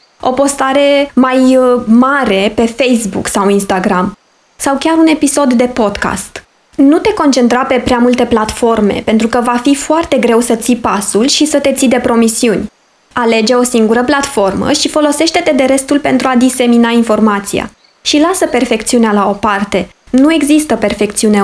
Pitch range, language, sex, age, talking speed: 220-275 Hz, Romanian, female, 20-39, 160 wpm